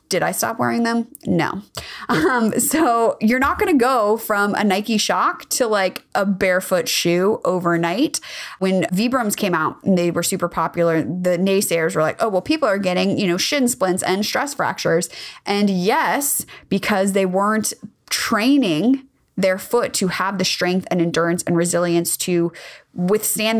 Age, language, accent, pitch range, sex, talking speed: 20-39, English, American, 175-215 Hz, female, 170 wpm